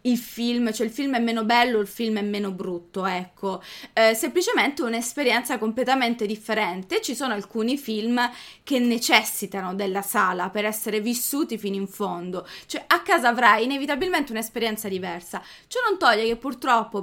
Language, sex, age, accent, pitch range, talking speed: Italian, female, 20-39, native, 205-260 Hz, 160 wpm